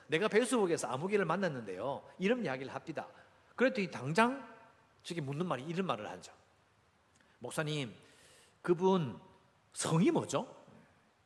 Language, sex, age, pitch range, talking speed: English, male, 50-69, 135-230 Hz, 100 wpm